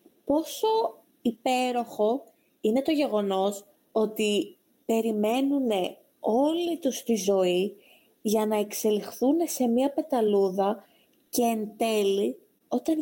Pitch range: 220-305 Hz